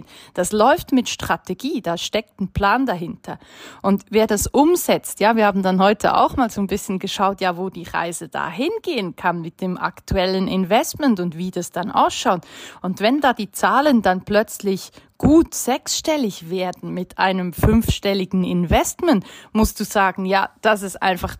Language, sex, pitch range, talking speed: German, female, 180-220 Hz, 170 wpm